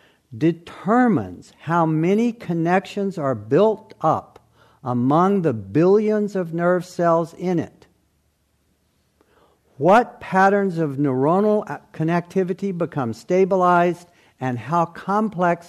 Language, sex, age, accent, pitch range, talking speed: English, male, 60-79, American, 120-175 Hz, 95 wpm